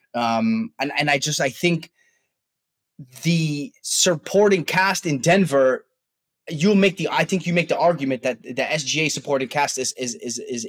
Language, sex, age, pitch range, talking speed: English, male, 20-39, 125-170 Hz, 175 wpm